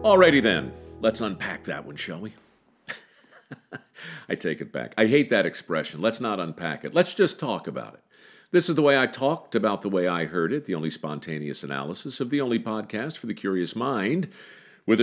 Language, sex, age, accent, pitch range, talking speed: English, male, 50-69, American, 85-120 Hz, 200 wpm